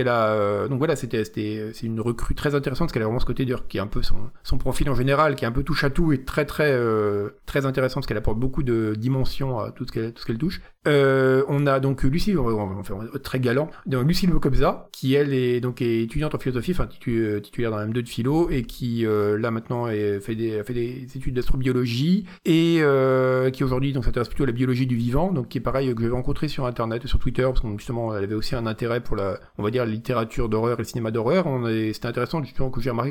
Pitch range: 110-135 Hz